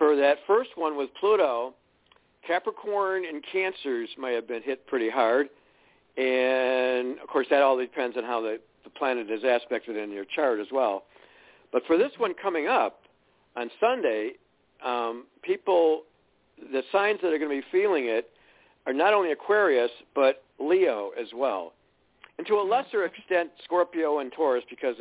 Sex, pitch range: male, 120-170 Hz